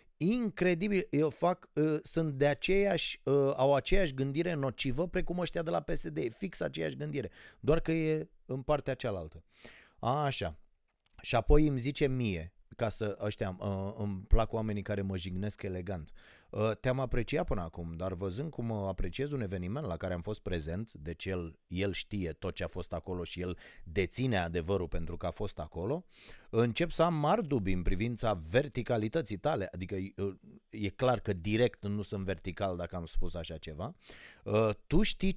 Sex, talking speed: male, 170 wpm